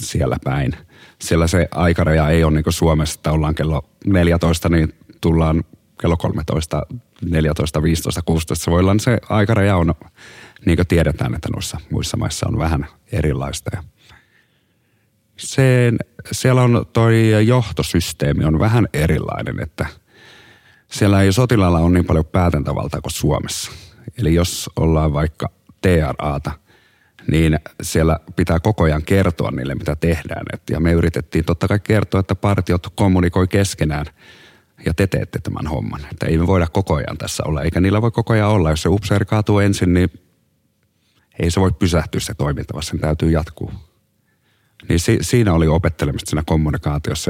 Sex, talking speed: male, 150 wpm